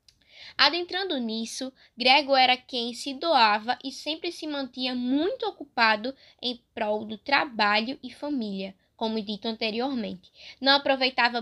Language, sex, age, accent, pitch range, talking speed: Portuguese, female, 10-29, Brazilian, 225-280 Hz, 125 wpm